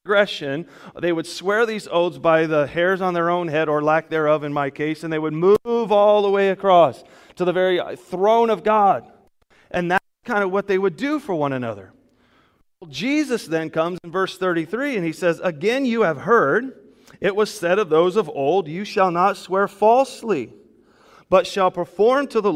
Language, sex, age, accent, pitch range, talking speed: English, male, 30-49, American, 160-210 Hz, 195 wpm